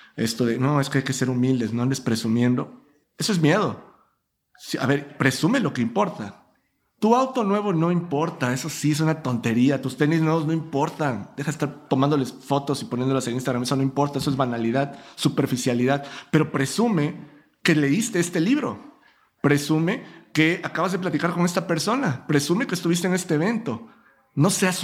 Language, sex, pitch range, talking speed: Spanish, male, 140-175 Hz, 180 wpm